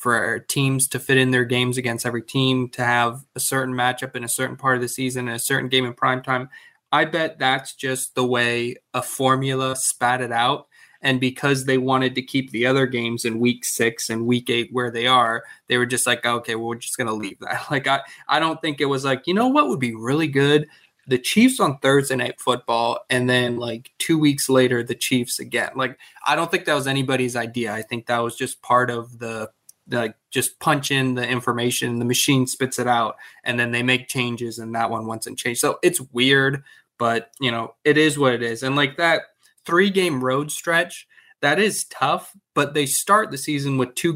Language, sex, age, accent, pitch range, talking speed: English, male, 20-39, American, 120-135 Hz, 220 wpm